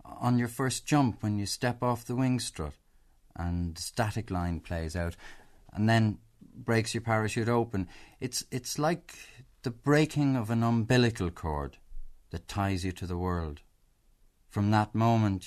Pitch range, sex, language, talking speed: 90-125 Hz, male, English, 160 wpm